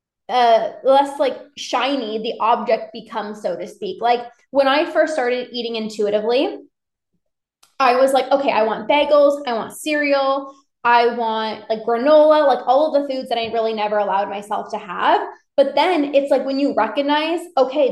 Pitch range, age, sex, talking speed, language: 220-280 Hz, 20-39, female, 175 wpm, English